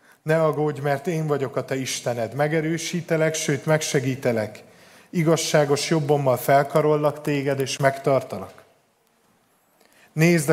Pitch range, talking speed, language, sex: 130-160 Hz, 105 wpm, Hungarian, male